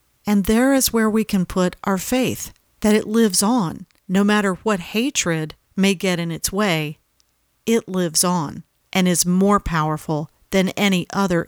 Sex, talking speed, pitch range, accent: female, 165 wpm, 175-225 Hz, American